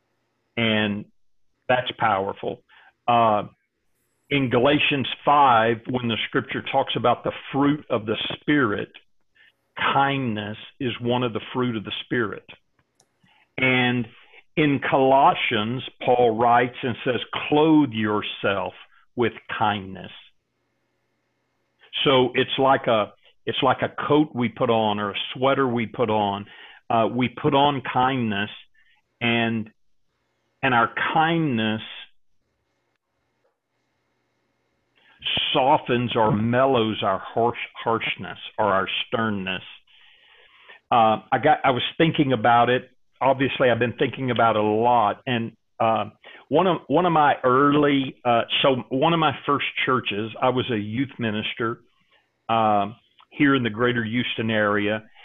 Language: English